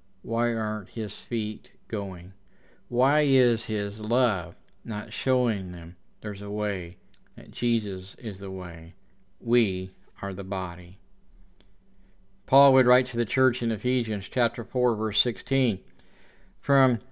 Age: 50-69